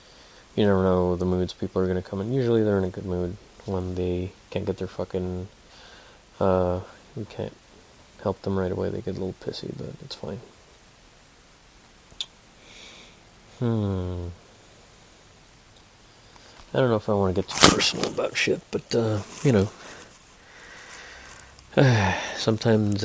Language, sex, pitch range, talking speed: English, male, 90-105 Hz, 145 wpm